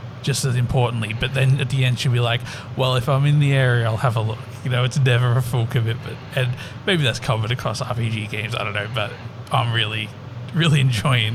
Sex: male